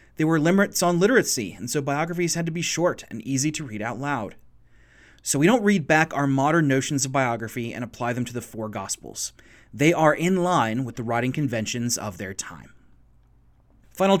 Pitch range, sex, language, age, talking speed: 120-165 Hz, male, English, 30-49, 200 wpm